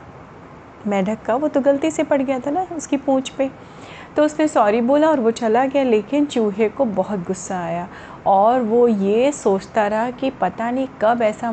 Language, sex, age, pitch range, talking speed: Hindi, female, 30-49, 210-275 Hz, 195 wpm